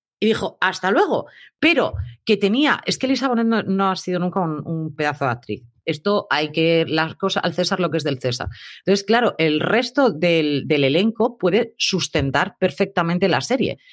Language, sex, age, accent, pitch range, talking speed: Spanish, female, 30-49, Spanish, 150-195 Hz, 195 wpm